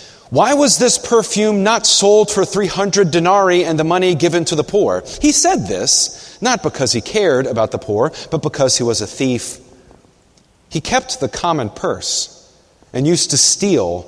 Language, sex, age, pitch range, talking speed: English, male, 30-49, 120-200 Hz, 175 wpm